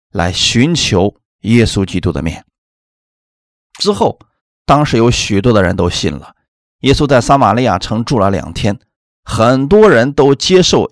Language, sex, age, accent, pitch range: Chinese, male, 30-49, native, 90-130 Hz